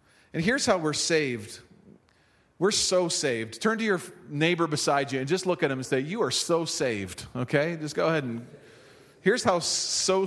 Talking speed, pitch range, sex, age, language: 195 wpm, 150-195 Hz, male, 40-59, English